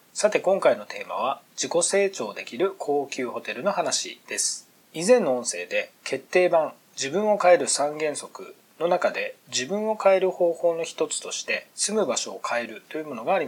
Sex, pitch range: male, 135-195 Hz